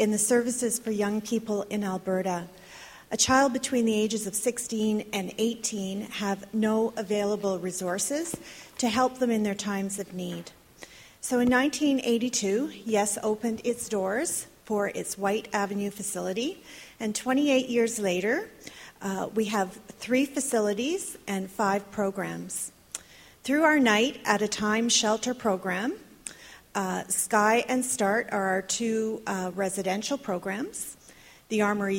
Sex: female